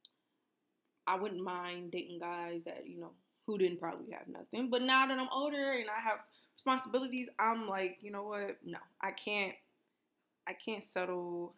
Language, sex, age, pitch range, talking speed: English, female, 20-39, 180-255 Hz, 170 wpm